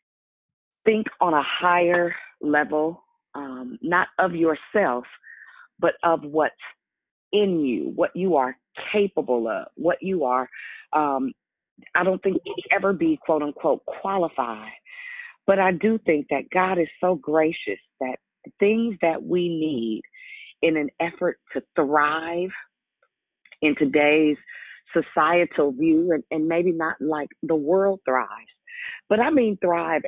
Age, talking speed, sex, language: 40-59, 135 wpm, female, English